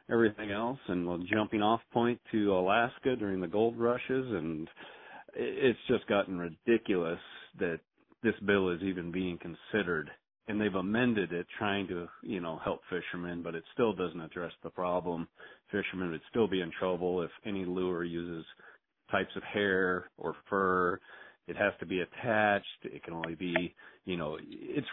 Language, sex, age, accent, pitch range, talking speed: English, male, 40-59, American, 85-105 Hz, 165 wpm